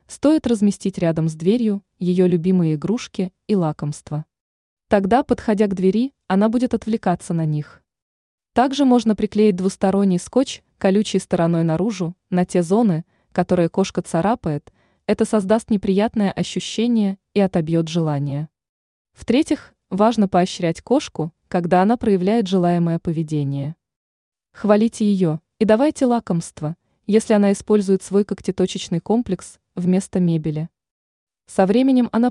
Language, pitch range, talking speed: Russian, 175-220 Hz, 120 wpm